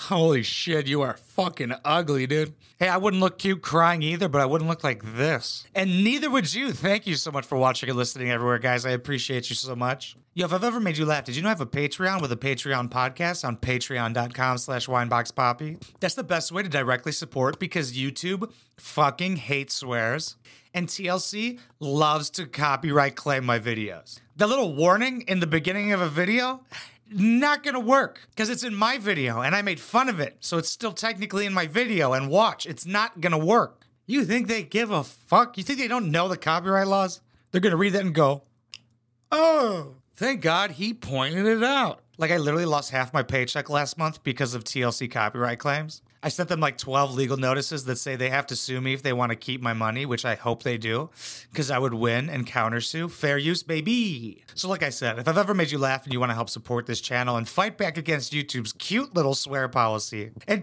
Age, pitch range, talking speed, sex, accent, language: 30-49, 125-190 Hz, 220 wpm, male, American, English